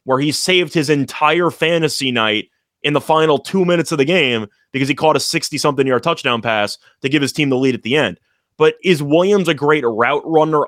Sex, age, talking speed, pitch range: male, 20-39, 215 wpm, 125-160 Hz